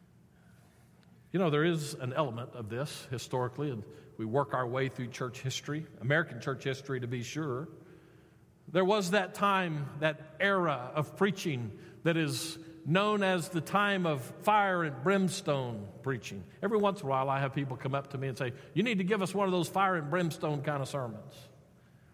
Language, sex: English, male